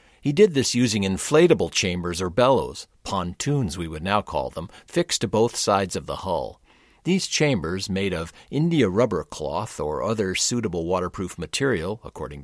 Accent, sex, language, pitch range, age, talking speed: American, male, English, 90-125 Hz, 50-69, 165 wpm